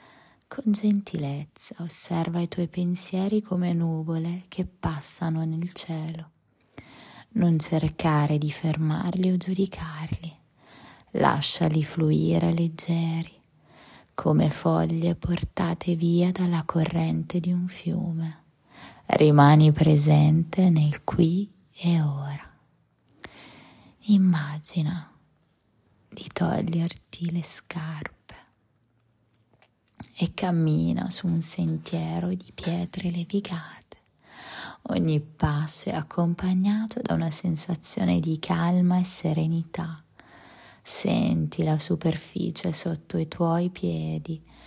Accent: native